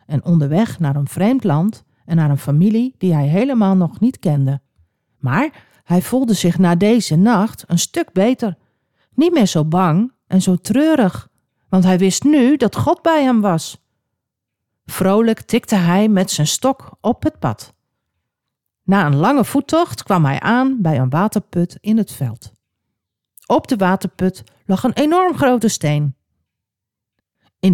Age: 40-59